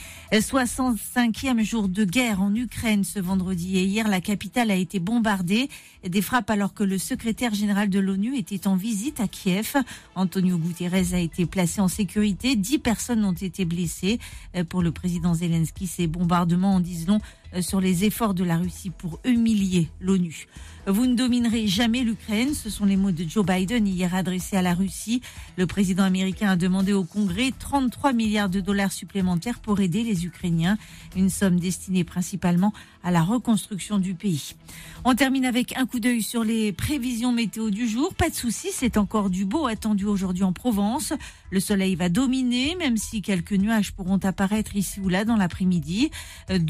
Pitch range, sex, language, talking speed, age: 185-235 Hz, female, French, 180 wpm, 40-59